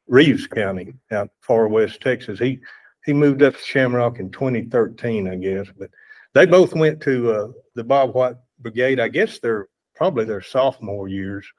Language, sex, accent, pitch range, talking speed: English, male, American, 115-140 Hz, 170 wpm